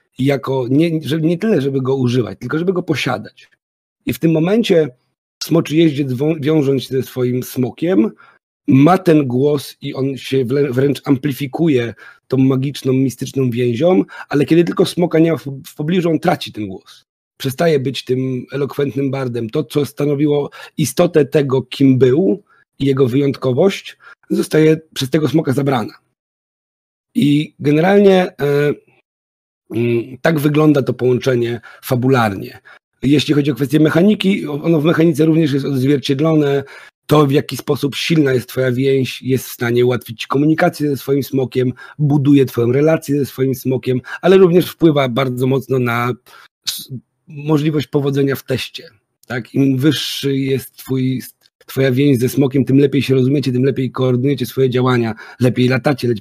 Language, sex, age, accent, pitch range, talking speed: Polish, male, 40-59, native, 130-150 Hz, 145 wpm